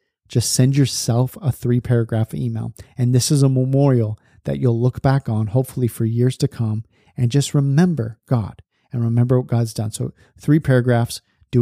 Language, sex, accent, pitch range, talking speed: English, male, American, 120-145 Hz, 175 wpm